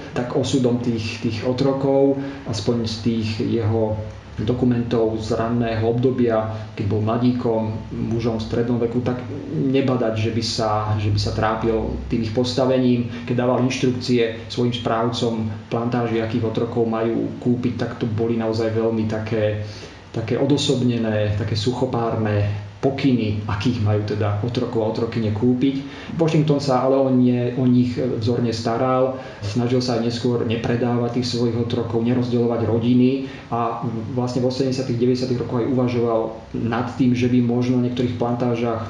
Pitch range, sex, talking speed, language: 110-125 Hz, male, 140 wpm, Slovak